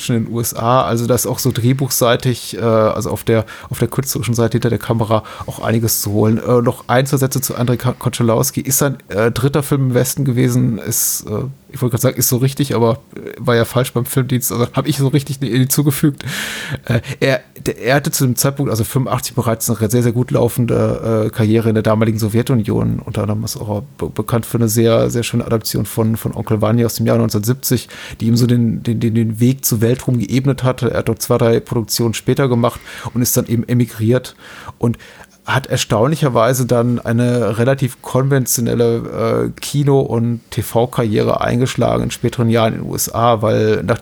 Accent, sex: German, male